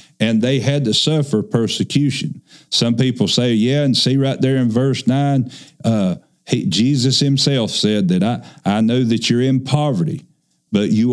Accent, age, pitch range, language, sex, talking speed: American, 50-69, 105-145 Hz, English, male, 165 wpm